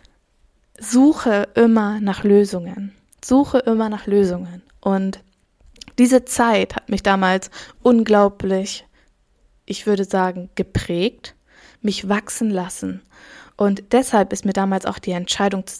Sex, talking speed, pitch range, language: female, 120 wpm, 200-235 Hz, German